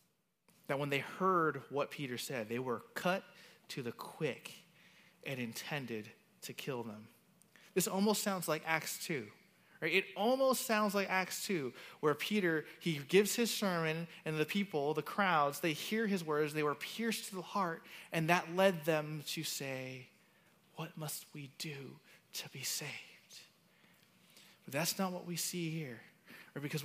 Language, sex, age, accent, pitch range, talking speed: English, male, 20-39, American, 145-190 Hz, 160 wpm